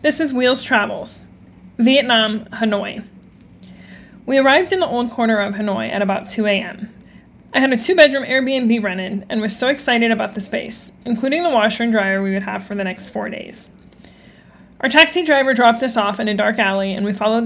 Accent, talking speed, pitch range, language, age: American, 195 wpm, 205-240 Hz, English, 20-39